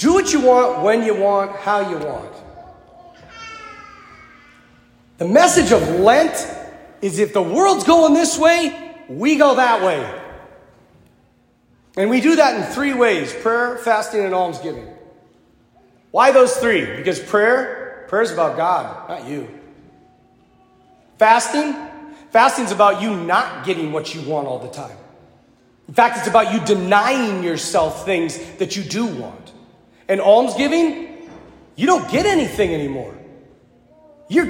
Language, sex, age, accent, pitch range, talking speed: English, male, 40-59, American, 185-300 Hz, 140 wpm